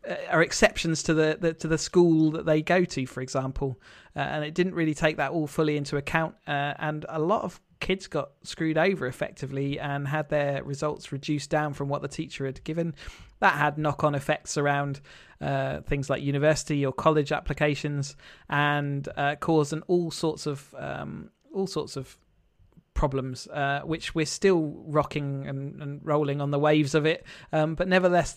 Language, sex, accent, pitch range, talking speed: English, male, British, 140-155 Hz, 185 wpm